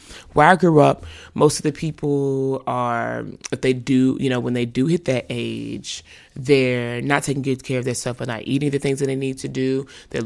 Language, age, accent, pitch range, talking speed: English, 20-39, American, 125-150 Hz, 220 wpm